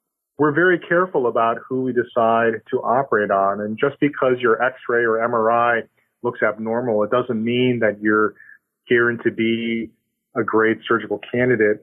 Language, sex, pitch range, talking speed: English, male, 110-125 Hz, 155 wpm